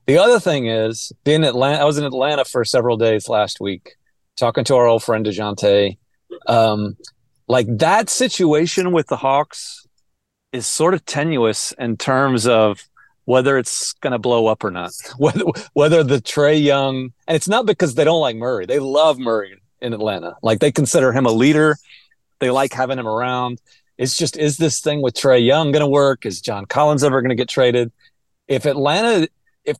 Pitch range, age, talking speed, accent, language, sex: 115-155 Hz, 40-59, 185 wpm, American, English, male